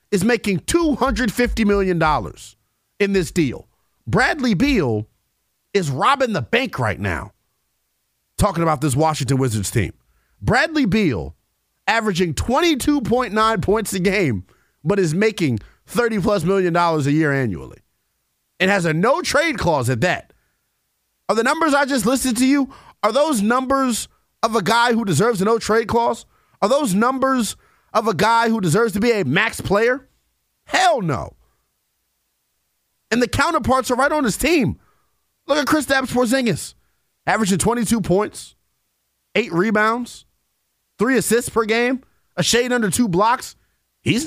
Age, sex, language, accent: 30-49, male, English, American